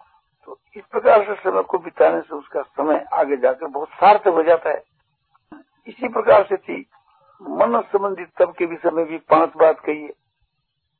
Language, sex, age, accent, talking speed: Hindi, male, 60-79, native, 180 wpm